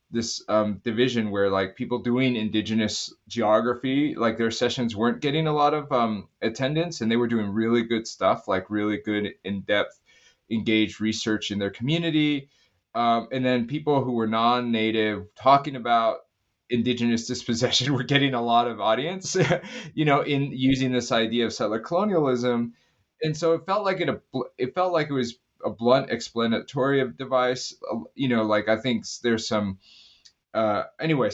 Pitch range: 110-130 Hz